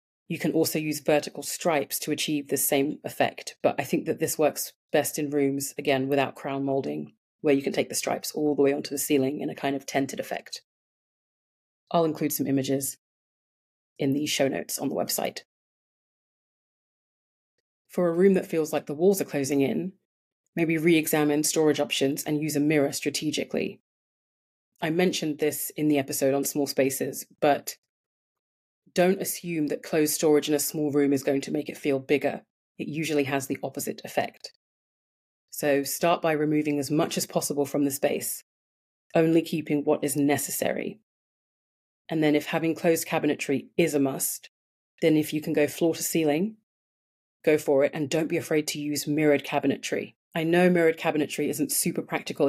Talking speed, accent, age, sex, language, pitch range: 180 wpm, British, 30-49, female, English, 140-160 Hz